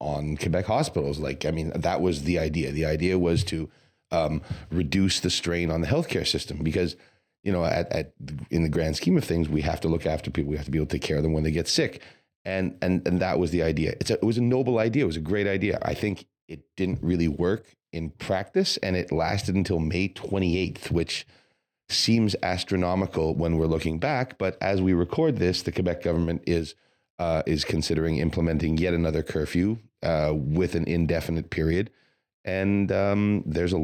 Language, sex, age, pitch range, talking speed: English, male, 40-59, 80-95 Hz, 210 wpm